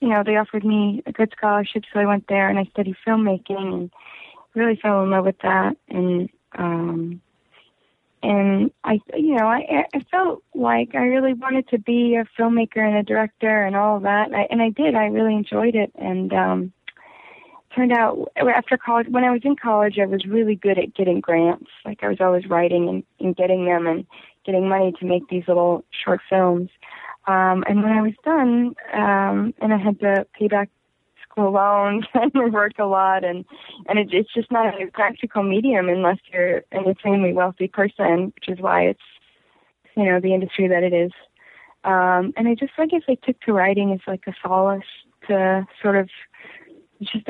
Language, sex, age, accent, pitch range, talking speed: English, female, 20-39, American, 185-225 Hz, 200 wpm